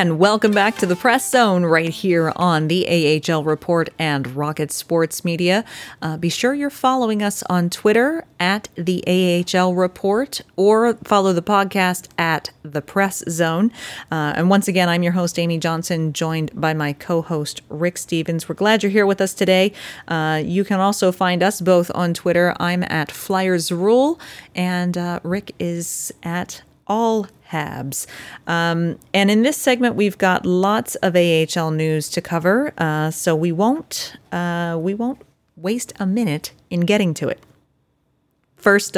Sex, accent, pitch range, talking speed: female, American, 165-195 Hz, 165 wpm